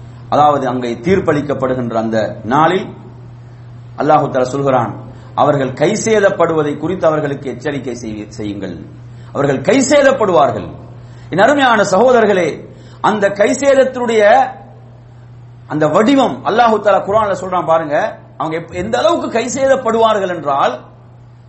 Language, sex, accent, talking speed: English, male, Indian, 60 wpm